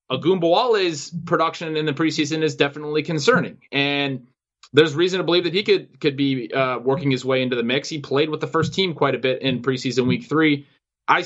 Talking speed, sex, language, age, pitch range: 210 wpm, male, English, 20-39, 130-160 Hz